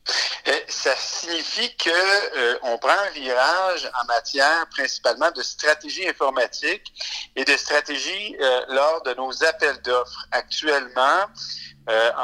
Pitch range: 125-190 Hz